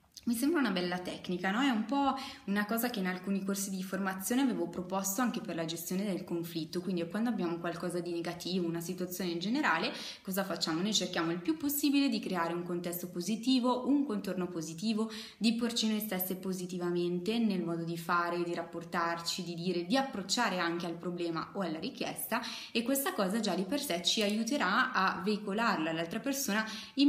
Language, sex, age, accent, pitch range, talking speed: Italian, female, 20-39, native, 175-225 Hz, 190 wpm